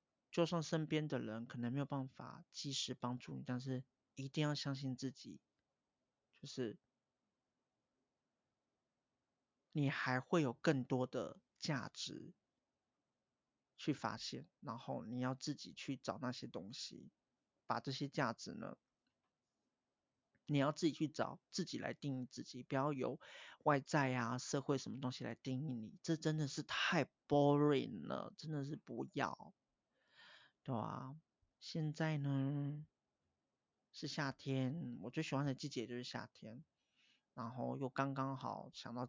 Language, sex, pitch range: Chinese, male, 125-150 Hz